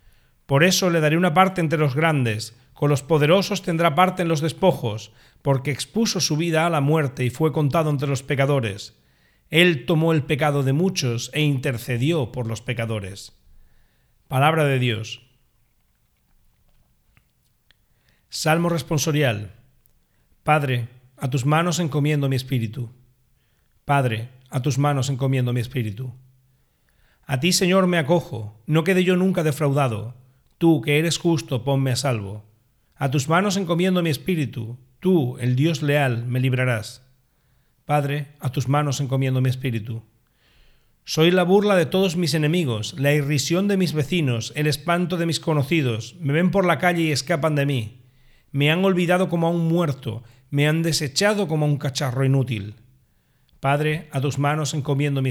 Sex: male